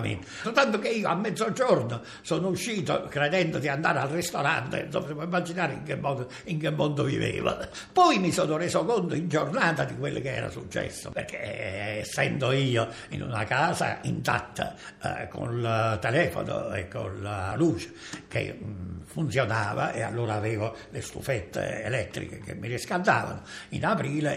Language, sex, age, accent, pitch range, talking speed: Italian, male, 60-79, native, 115-155 Hz, 150 wpm